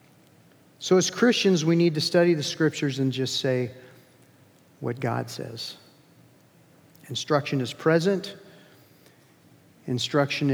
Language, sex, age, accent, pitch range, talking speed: English, male, 50-69, American, 140-170 Hz, 110 wpm